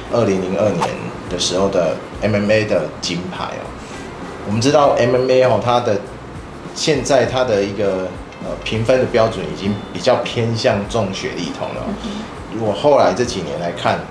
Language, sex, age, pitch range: Chinese, male, 30-49, 95-120 Hz